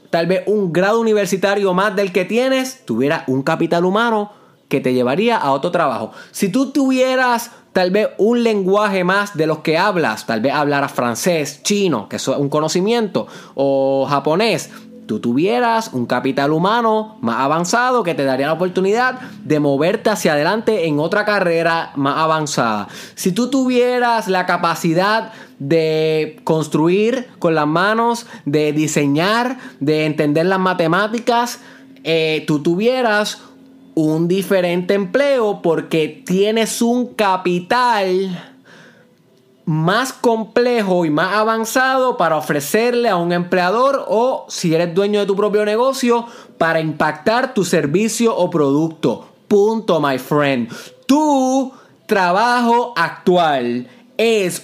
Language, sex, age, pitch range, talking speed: Spanish, male, 20-39, 160-230 Hz, 135 wpm